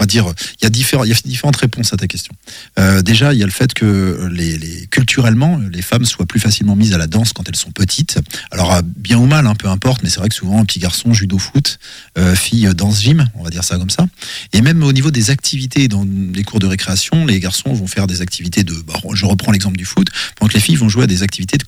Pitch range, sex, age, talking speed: 95-125 Hz, male, 40-59, 255 wpm